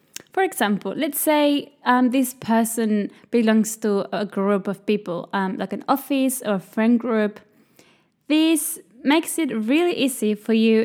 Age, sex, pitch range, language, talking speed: 10-29, female, 225-290 Hz, English, 155 wpm